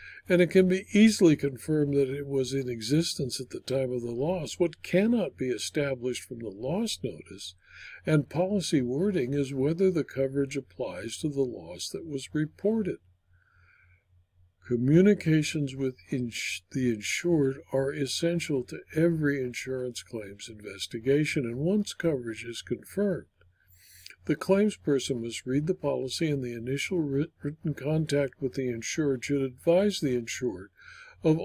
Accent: American